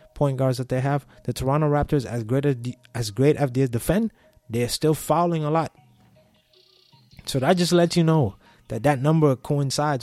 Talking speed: 190 wpm